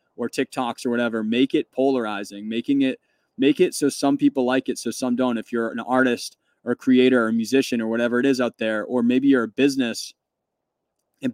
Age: 20-39